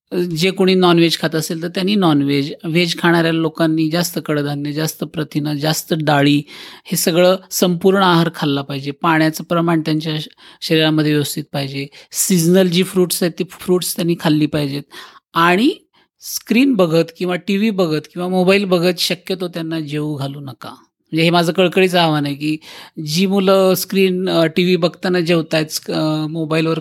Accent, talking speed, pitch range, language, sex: native, 140 wpm, 155-180 Hz, Marathi, male